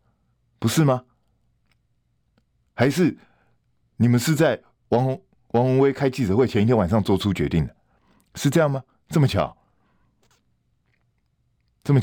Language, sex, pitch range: Chinese, male, 115-180 Hz